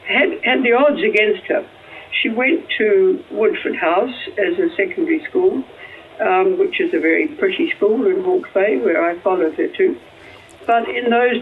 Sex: female